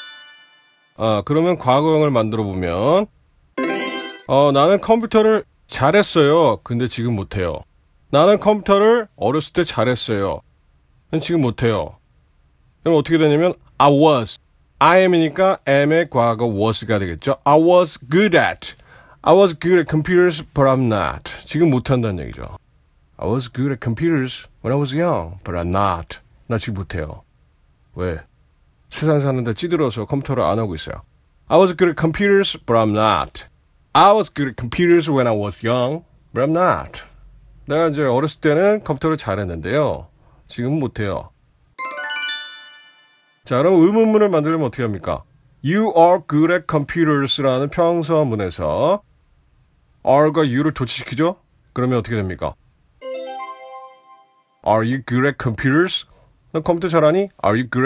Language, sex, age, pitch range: Korean, male, 40-59, 110-165 Hz